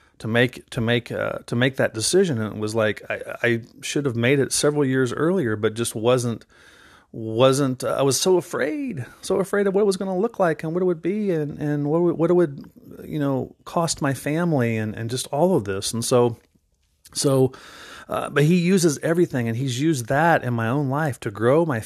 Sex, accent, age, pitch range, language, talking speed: male, American, 40-59, 110-145 Hz, English, 225 wpm